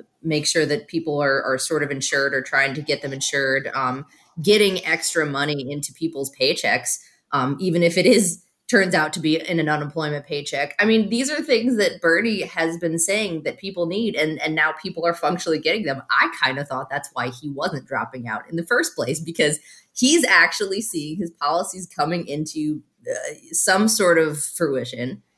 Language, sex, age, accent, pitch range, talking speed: English, female, 20-39, American, 140-185 Hz, 195 wpm